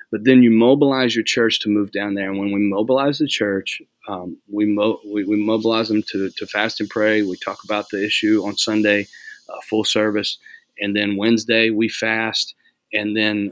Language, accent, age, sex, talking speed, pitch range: English, American, 30-49, male, 200 wpm, 105-120 Hz